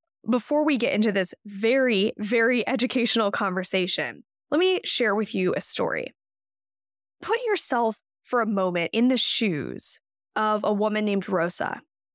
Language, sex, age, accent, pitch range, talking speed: English, female, 10-29, American, 185-250 Hz, 145 wpm